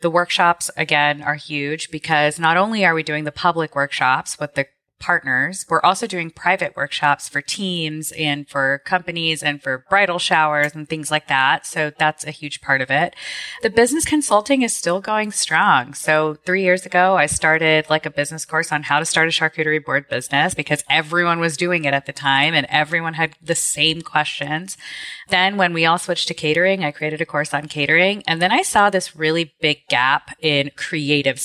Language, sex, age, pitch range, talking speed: English, female, 20-39, 145-180 Hz, 200 wpm